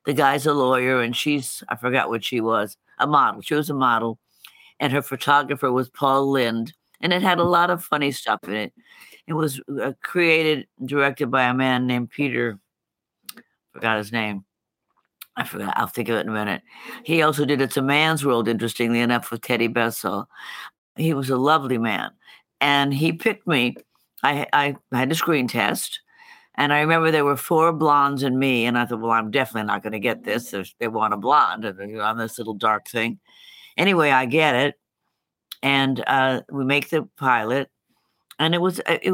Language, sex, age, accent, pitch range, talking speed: English, female, 60-79, American, 120-150 Hz, 190 wpm